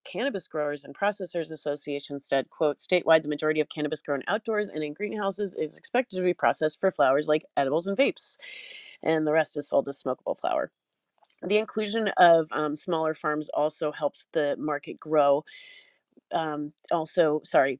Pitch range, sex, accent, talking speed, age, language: 150-185 Hz, female, American, 170 wpm, 30-49, English